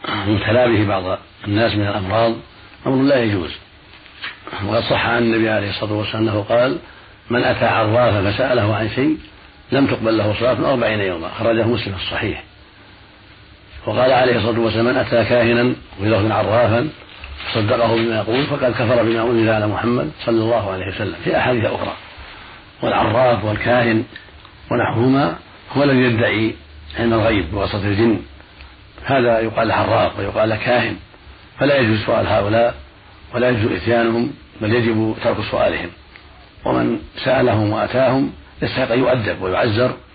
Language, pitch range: Arabic, 105-120 Hz